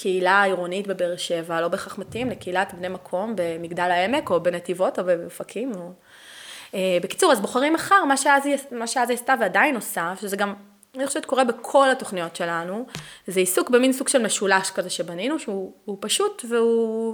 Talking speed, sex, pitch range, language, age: 155 wpm, female, 185-250 Hz, Hebrew, 20-39